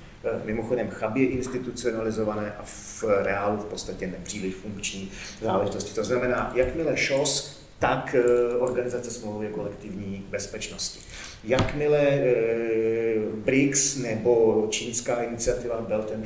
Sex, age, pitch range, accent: male, 40-59, 105-125 Hz, native